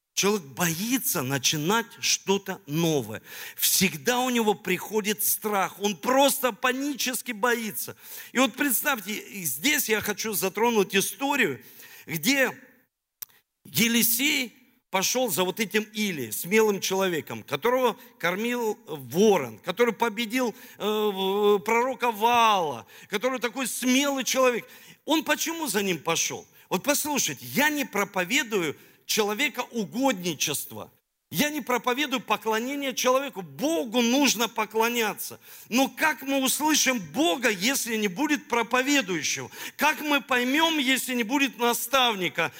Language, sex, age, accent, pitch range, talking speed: Russian, male, 50-69, native, 205-265 Hz, 110 wpm